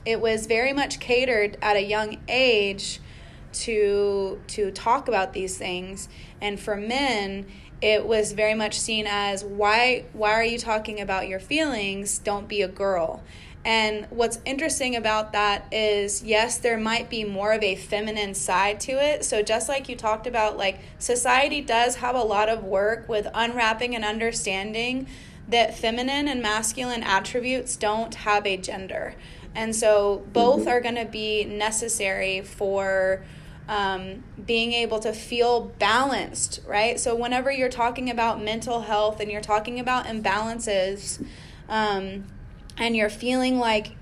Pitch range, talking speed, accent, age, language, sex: 205-235 Hz, 155 wpm, American, 20-39, English, female